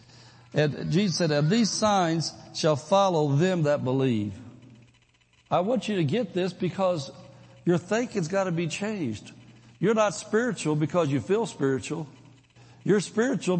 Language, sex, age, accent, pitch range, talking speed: English, male, 60-79, American, 135-185 Hz, 145 wpm